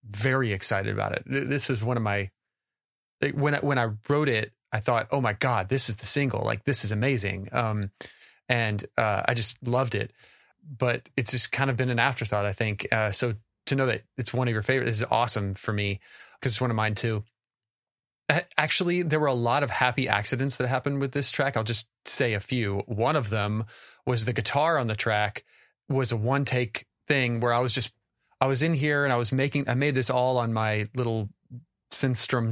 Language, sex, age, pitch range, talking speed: English, male, 30-49, 110-135 Hz, 215 wpm